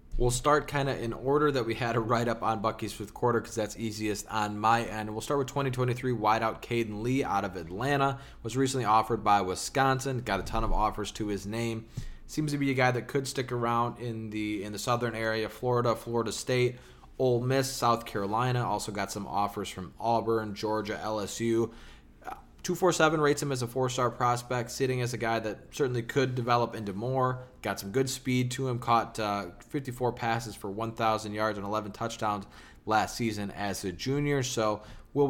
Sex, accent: male, American